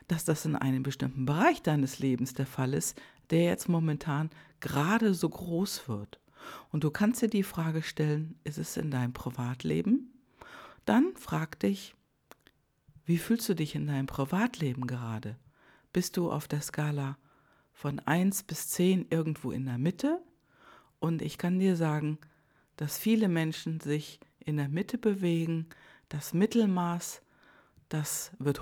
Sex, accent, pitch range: female, German, 140-180 Hz